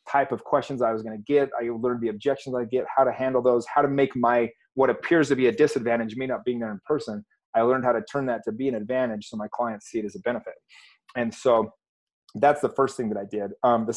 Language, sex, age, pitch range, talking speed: English, male, 30-49, 115-140 Hz, 270 wpm